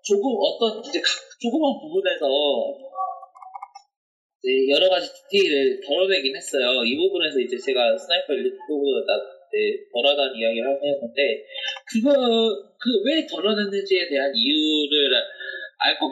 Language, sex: Korean, male